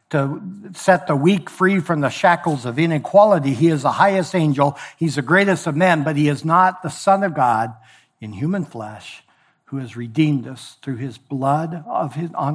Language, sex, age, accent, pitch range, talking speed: English, male, 60-79, American, 130-170 Hz, 185 wpm